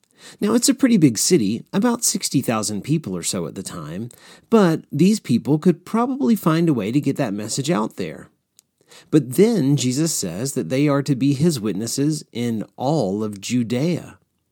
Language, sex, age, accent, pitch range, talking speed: English, male, 40-59, American, 135-190 Hz, 180 wpm